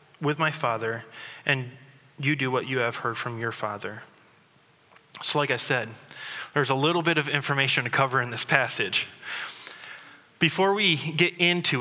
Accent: American